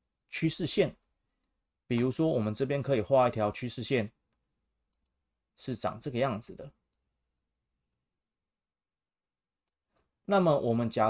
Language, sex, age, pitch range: Chinese, male, 30-49, 105-135 Hz